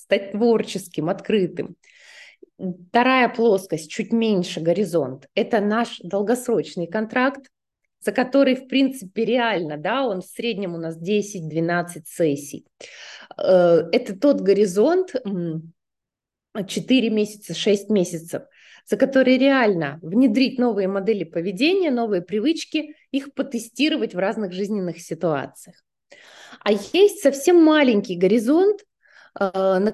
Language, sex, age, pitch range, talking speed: Russian, female, 20-39, 180-260 Hz, 105 wpm